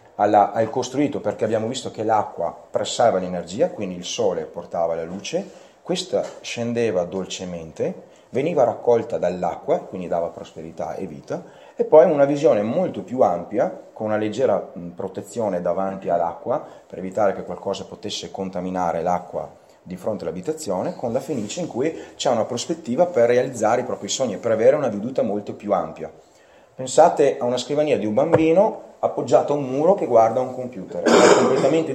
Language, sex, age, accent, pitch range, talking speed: Italian, male, 30-49, native, 95-145 Hz, 165 wpm